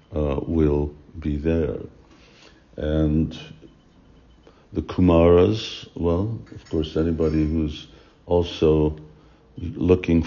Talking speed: 80 wpm